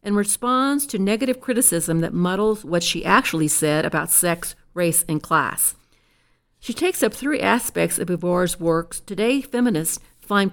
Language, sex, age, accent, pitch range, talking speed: English, female, 50-69, American, 175-235 Hz, 155 wpm